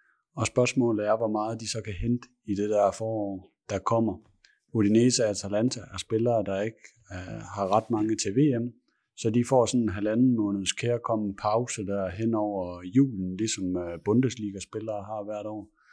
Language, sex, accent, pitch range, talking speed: Danish, male, native, 100-120 Hz, 175 wpm